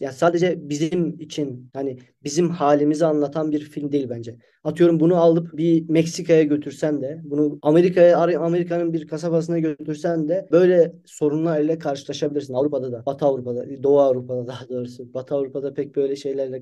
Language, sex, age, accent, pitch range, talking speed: Turkish, male, 30-49, native, 145-175 Hz, 150 wpm